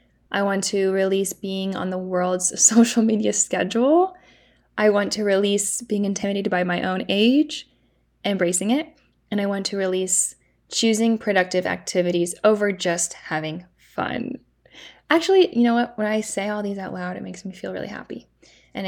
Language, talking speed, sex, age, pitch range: English, 170 wpm, female, 10-29, 190-225 Hz